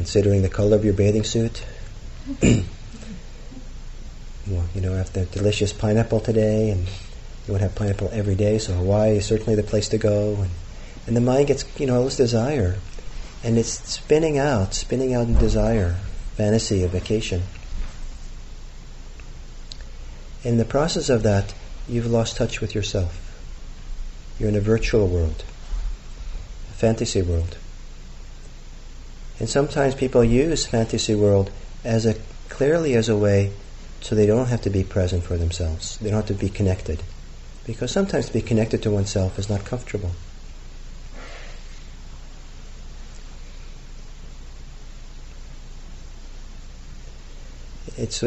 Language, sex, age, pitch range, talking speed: English, male, 40-59, 70-110 Hz, 130 wpm